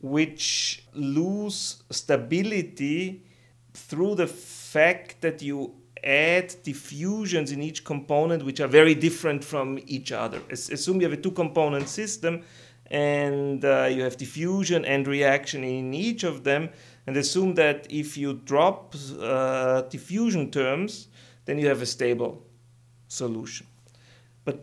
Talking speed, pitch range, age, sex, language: 135 wpm, 125-170 Hz, 40-59, male, English